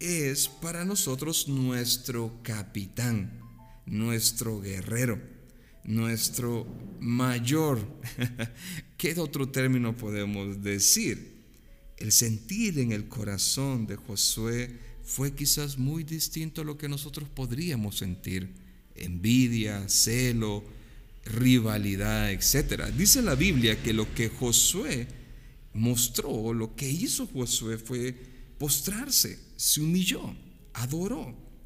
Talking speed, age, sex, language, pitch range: 100 wpm, 50-69, male, Spanish, 105-140 Hz